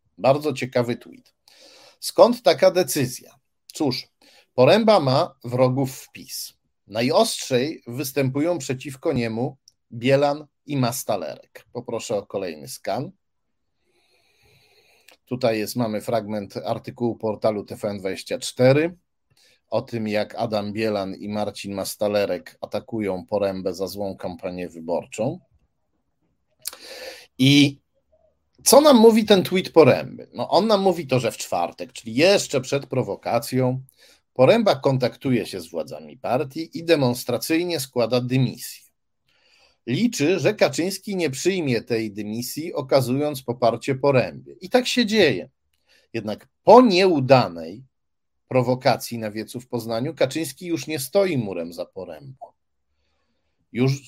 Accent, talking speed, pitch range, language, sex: native, 115 wpm, 110-155 Hz, Polish, male